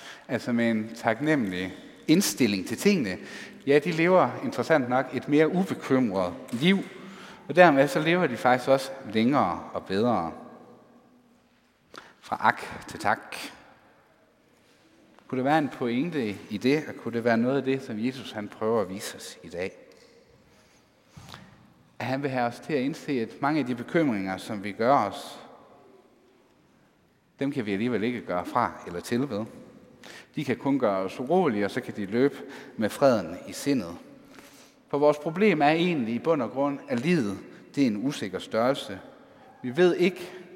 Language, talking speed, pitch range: Danish, 165 wpm, 120-180 Hz